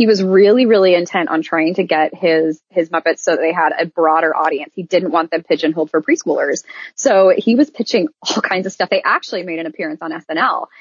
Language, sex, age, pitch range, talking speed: English, female, 20-39, 175-275 Hz, 230 wpm